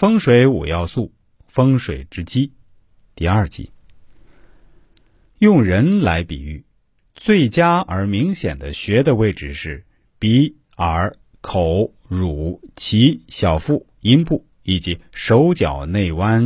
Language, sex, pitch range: Chinese, male, 80-130 Hz